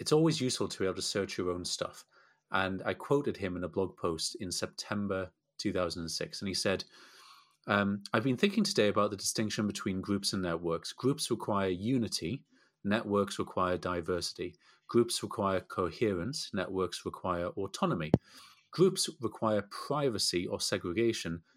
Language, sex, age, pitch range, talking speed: English, male, 30-49, 95-115 Hz, 150 wpm